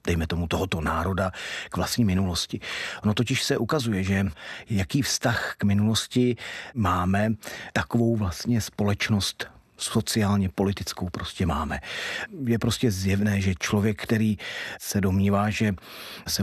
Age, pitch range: 40-59, 95-110 Hz